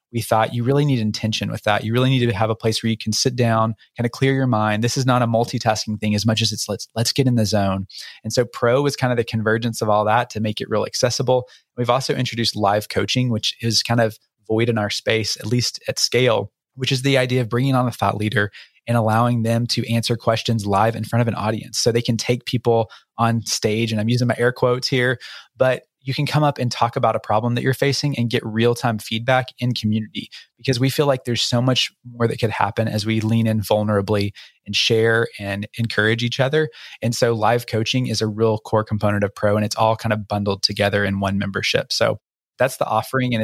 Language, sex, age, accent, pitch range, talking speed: English, male, 20-39, American, 110-125 Hz, 245 wpm